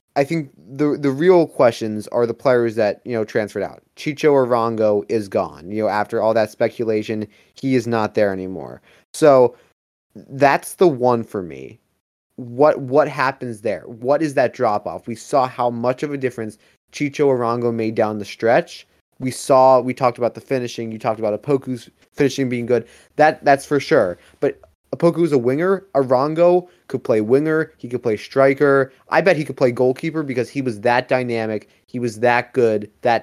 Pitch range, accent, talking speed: 115-140 Hz, American, 185 wpm